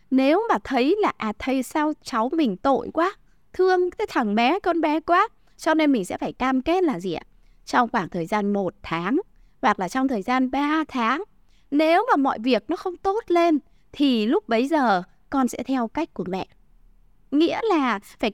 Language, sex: Vietnamese, female